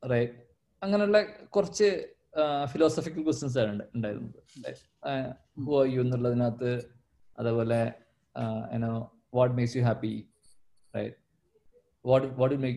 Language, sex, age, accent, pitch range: Malayalam, male, 20-39, native, 120-155 Hz